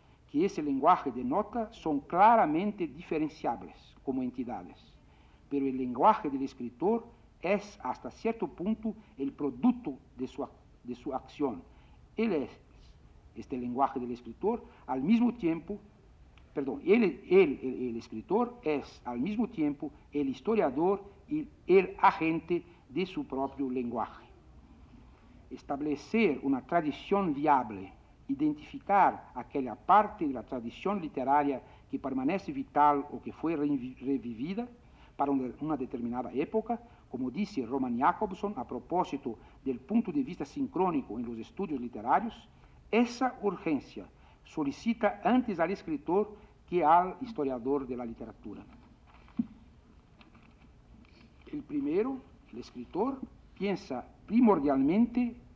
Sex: male